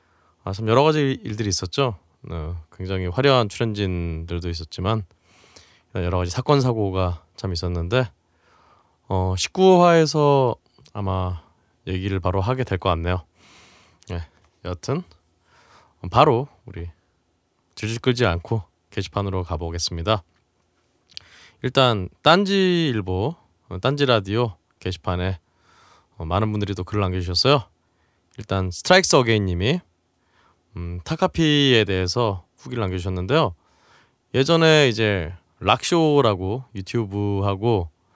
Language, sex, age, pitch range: Korean, male, 20-39, 90-115 Hz